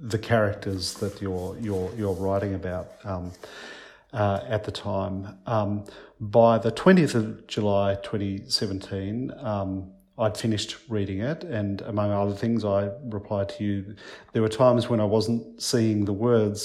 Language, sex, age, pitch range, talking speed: English, male, 40-59, 100-115 Hz, 155 wpm